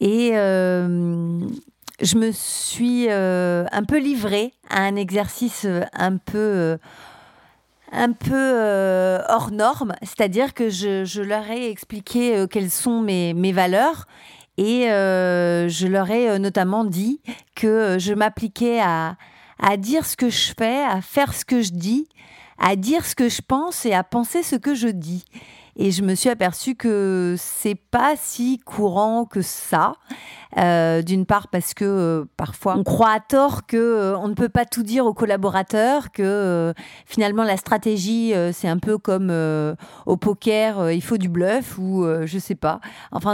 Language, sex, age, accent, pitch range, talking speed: French, female, 50-69, French, 185-230 Hz, 170 wpm